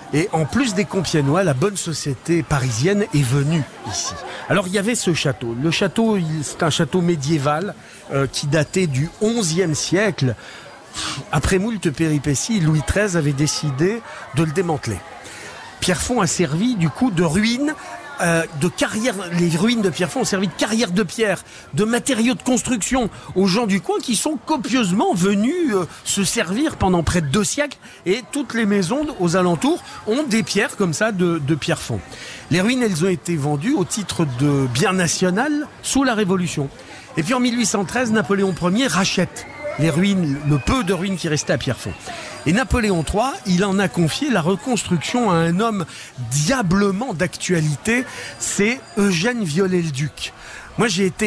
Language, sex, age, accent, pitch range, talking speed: French, male, 50-69, French, 160-225 Hz, 170 wpm